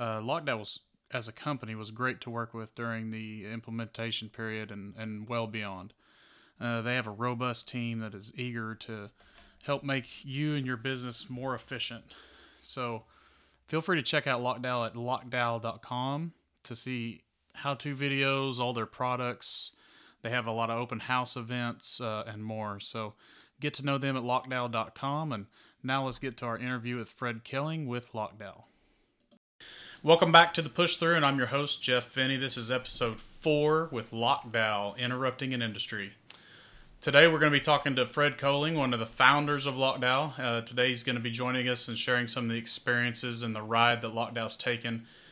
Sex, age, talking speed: male, 30-49, 180 wpm